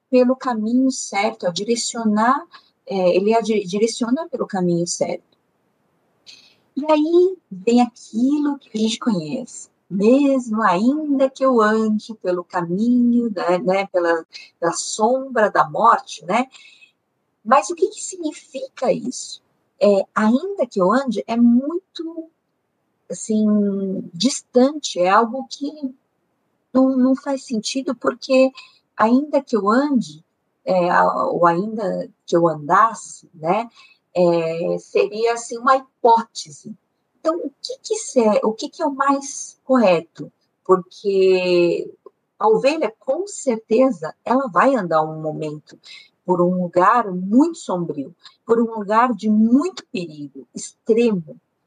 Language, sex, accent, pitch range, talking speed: Portuguese, female, Brazilian, 190-270 Hz, 125 wpm